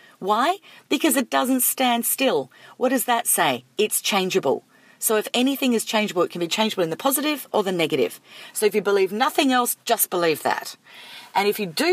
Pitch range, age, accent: 170-230 Hz, 40-59, Australian